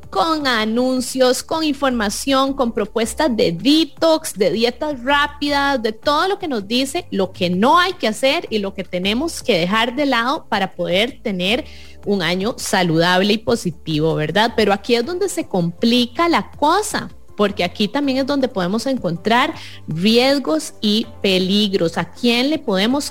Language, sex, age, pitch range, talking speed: English, female, 30-49, 190-270 Hz, 160 wpm